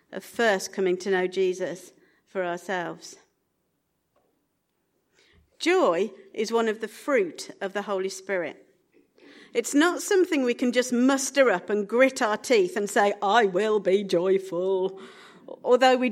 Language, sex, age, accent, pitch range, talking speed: English, female, 50-69, British, 200-270 Hz, 140 wpm